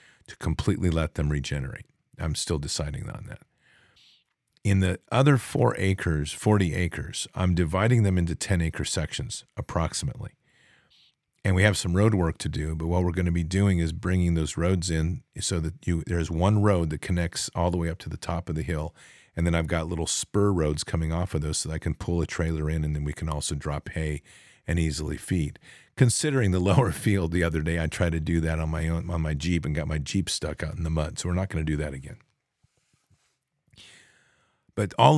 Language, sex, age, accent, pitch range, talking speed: English, male, 50-69, American, 80-100 Hz, 220 wpm